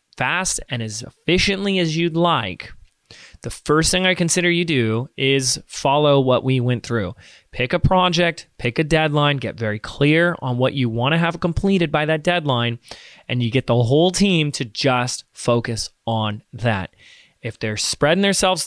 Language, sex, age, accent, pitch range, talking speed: English, male, 30-49, American, 125-175 Hz, 175 wpm